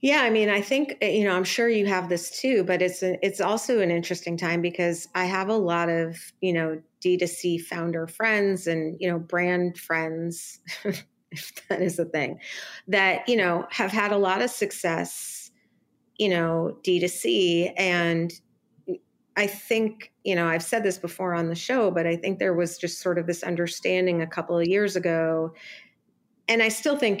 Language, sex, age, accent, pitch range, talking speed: English, female, 40-59, American, 165-195 Hz, 185 wpm